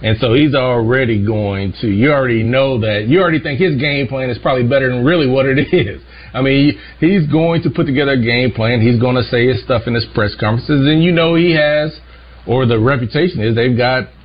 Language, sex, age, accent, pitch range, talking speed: English, male, 40-59, American, 105-140 Hz, 230 wpm